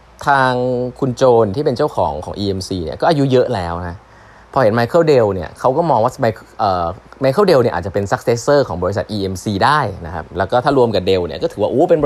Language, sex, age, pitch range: Thai, male, 20-39, 95-125 Hz